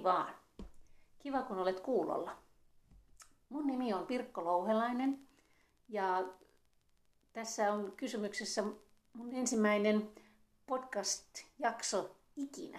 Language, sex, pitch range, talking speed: Finnish, female, 175-225 Hz, 85 wpm